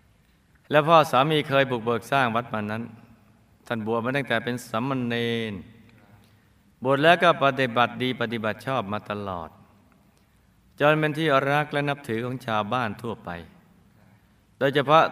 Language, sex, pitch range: Thai, male, 105-130 Hz